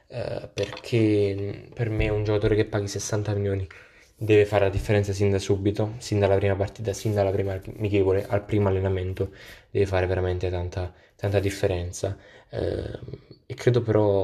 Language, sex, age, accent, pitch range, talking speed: Italian, male, 10-29, native, 95-105 Hz, 160 wpm